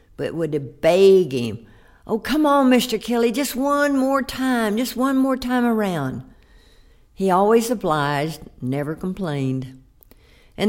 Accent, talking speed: American, 140 wpm